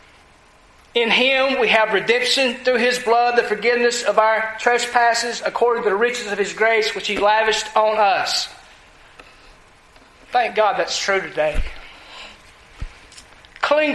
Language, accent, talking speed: English, American, 135 wpm